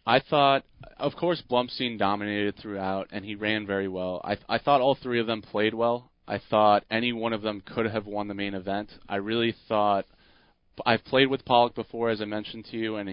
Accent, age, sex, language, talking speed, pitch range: American, 30-49, male, English, 220 wpm, 105-120 Hz